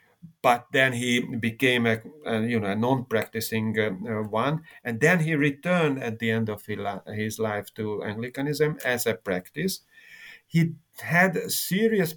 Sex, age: male, 50-69